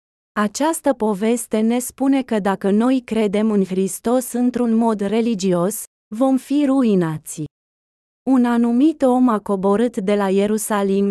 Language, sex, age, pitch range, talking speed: Romanian, female, 20-39, 200-250 Hz, 130 wpm